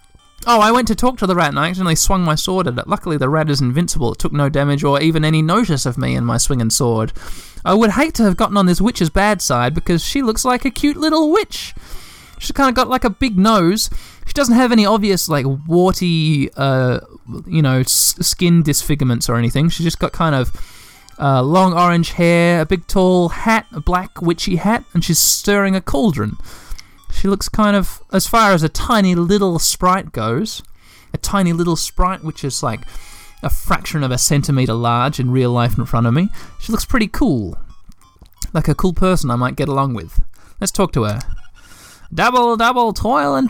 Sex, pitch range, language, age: male, 145-220 Hz, English, 20-39